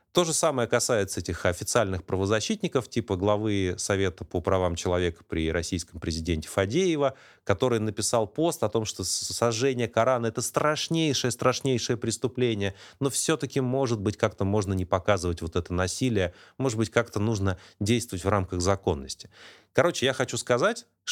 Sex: male